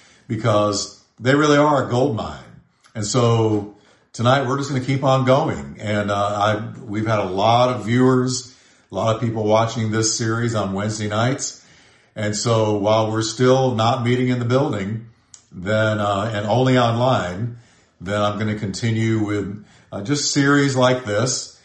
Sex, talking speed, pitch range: male, 170 wpm, 105-125 Hz